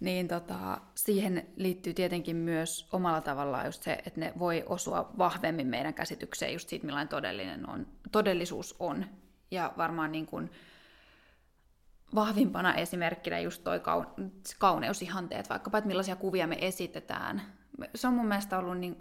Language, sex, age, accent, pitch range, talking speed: Finnish, female, 20-39, native, 165-210 Hz, 140 wpm